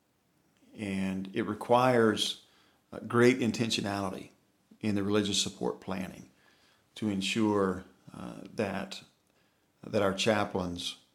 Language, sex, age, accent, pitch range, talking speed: English, male, 50-69, American, 100-115 Hz, 95 wpm